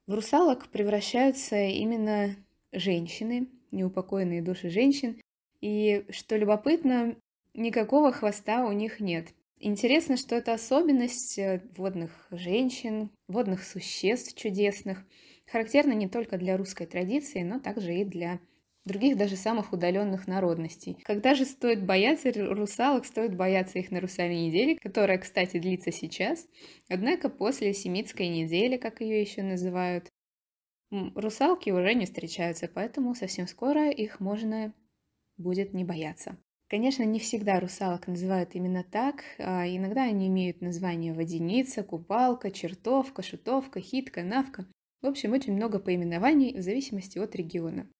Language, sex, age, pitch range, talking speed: Russian, female, 20-39, 185-245 Hz, 125 wpm